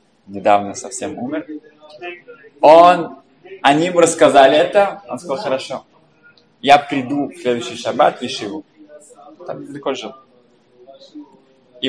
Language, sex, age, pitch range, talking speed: Russian, male, 20-39, 125-175 Hz, 105 wpm